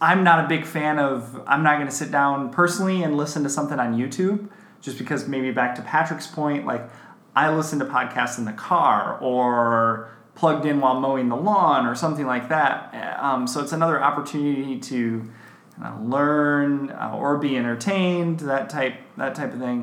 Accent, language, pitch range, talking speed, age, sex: American, English, 120-155 Hz, 190 wpm, 30-49, male